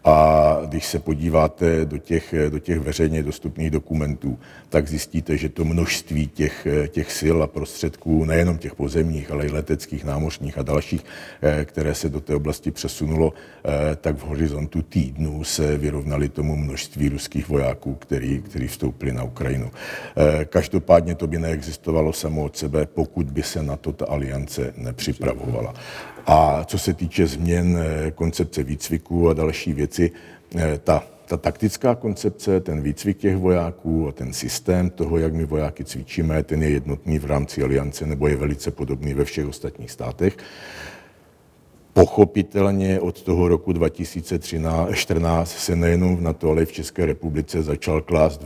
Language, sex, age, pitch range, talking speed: Czech, male, 60-79, 75-85 Hz, 150 wpm